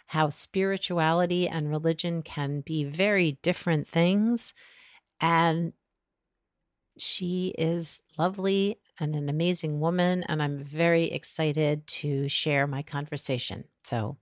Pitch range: 150-185 Hz